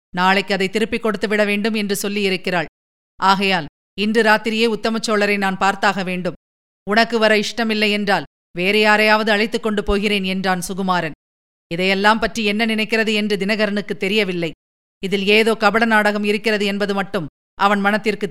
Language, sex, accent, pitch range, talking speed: Tamil, female, native, 190-215 Hz, 135 wpm